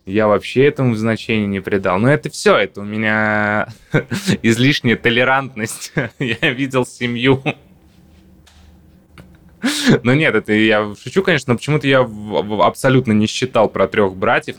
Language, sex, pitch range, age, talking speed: Russian, male, 100-125 Hz, 20-39, 130 wpm